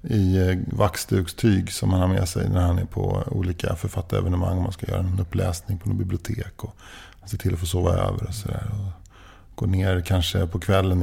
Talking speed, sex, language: 200 wpm, male, English